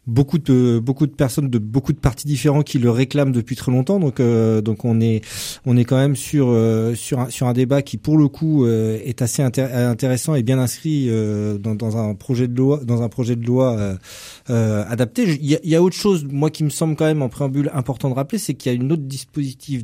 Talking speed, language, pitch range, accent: 255 wpm, French, 115-140 Hz, French